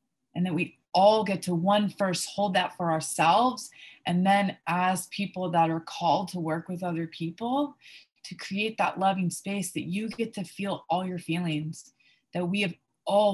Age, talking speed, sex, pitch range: 20-39, 185 wpm, female, 165-200 Hz